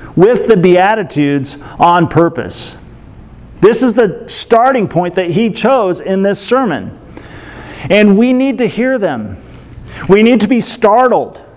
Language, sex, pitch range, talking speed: English, male, 150-200 Hz, 140 wpm